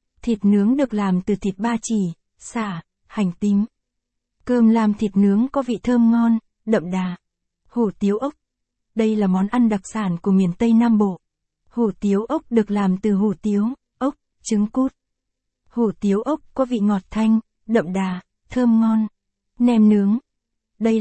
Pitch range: 200-235 Hz